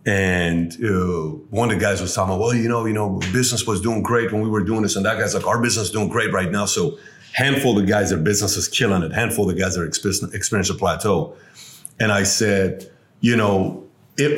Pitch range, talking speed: 105-140 Hz, 240 wpm